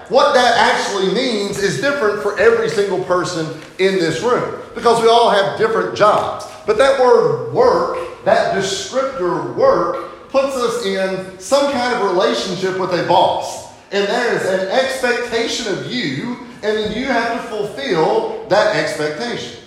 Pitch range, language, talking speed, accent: 165-235 Hz, English, 155 wpm, American